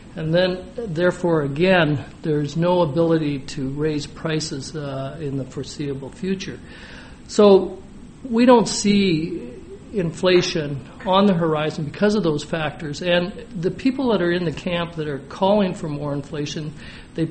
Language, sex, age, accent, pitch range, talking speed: English, male, 60-79, American, 145-185 Hz, 145 wpm